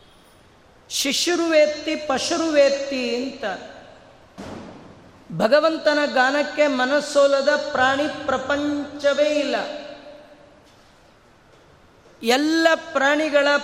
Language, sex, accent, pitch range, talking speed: Kannada, female, native, 265-295 Hz, 50 wpm